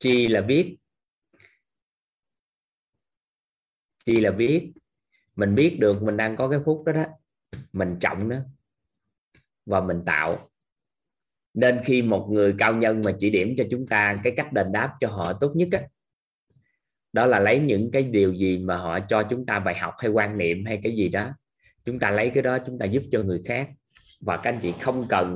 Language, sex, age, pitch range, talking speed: Vietnamese, male, 20-39, 100-130 Hz, 190 wpm